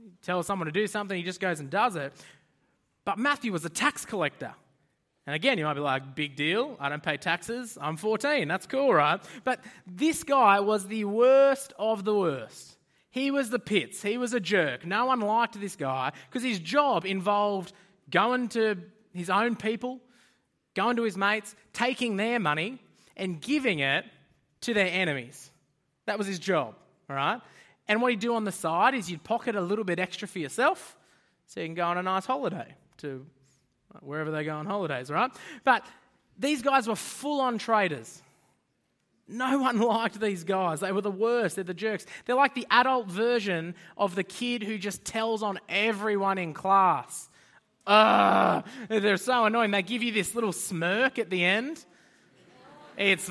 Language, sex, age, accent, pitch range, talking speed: English, male, 20-39, Australian, 180-235 Hz, 180 wpm